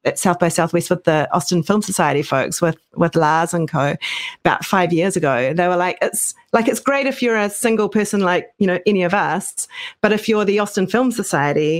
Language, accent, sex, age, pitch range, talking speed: English, Australian, female, 40-59, 170-210 Hz, 225 wpm